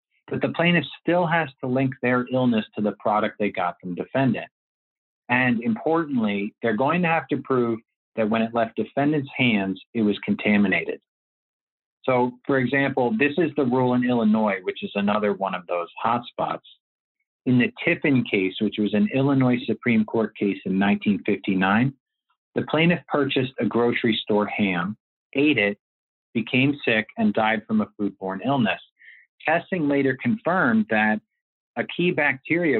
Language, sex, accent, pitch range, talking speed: English, male, American, 105-140 Hz, 155 wpm